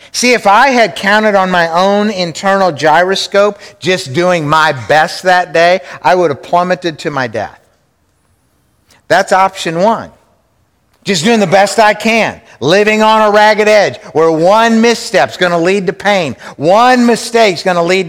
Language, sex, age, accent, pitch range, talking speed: English, male, 50-69, American, 155-220 Hz, 175 wpm